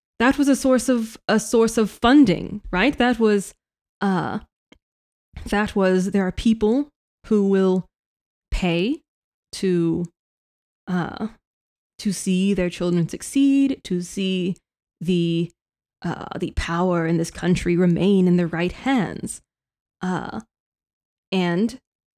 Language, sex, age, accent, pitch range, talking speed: English, female, 20-39, American, 180-220 Hz, 120 wpm